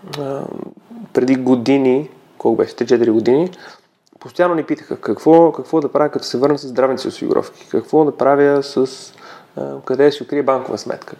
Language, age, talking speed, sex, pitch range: Bulgarian, 30-49, 150 wpm, male, 120-150 Hz